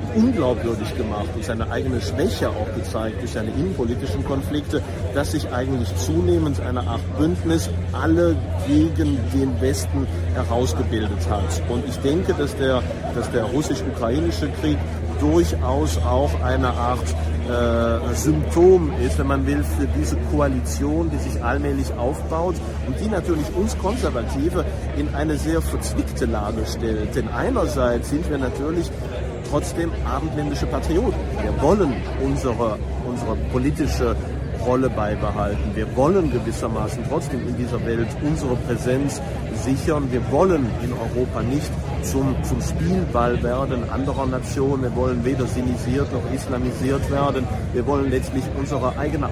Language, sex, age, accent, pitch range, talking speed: German, male, 40-59, German, 80-125 Hz, 135 wpm